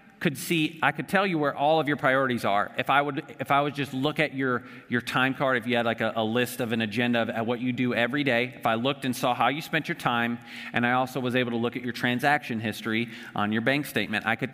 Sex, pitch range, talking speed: male, 125-160 Hz, 285 wpm